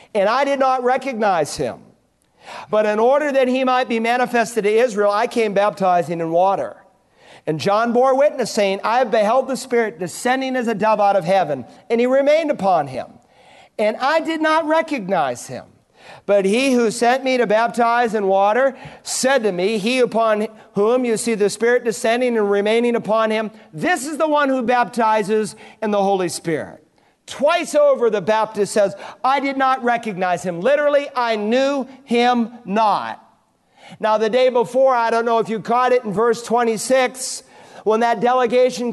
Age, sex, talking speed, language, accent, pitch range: 50-69, male, 175 wpm, English, American, 215-265 Hz